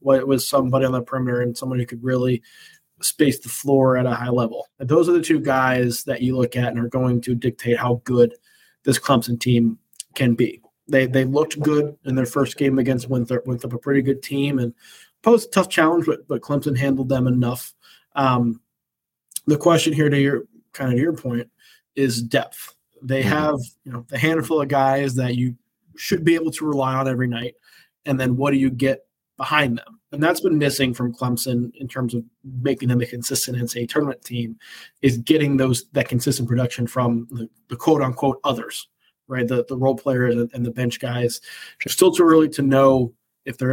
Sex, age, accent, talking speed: male, 20-39, American, 205 wpm